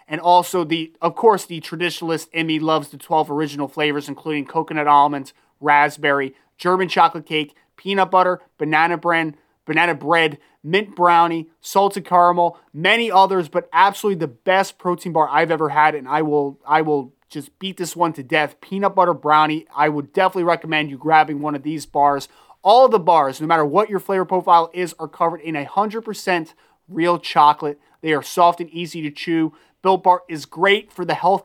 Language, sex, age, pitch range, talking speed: English, male, 30-49, 150-185 Hz, 185 wpm